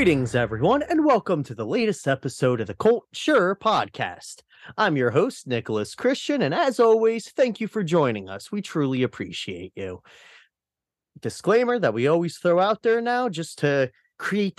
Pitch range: 130-195 Hz